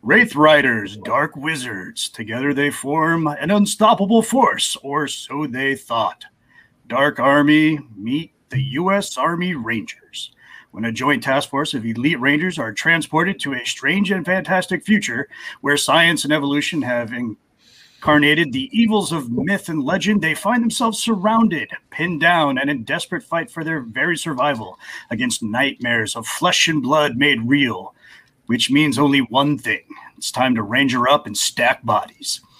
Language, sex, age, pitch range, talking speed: English, male, 30-49, 135-185 Hz, 155 wpm